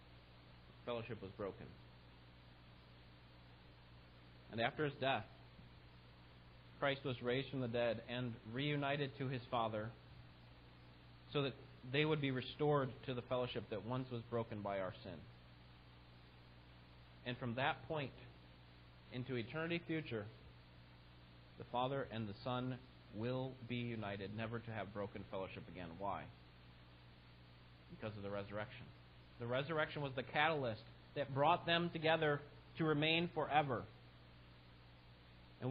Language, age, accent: English, 40-59, American